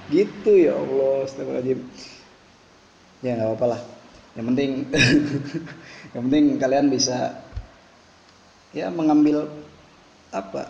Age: 20-39